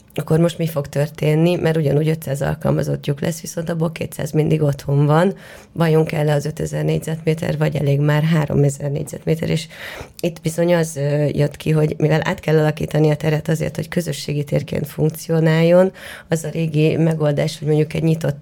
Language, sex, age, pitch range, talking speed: Hungarian, female, 30-49, 145-165 Hz, 175 wpm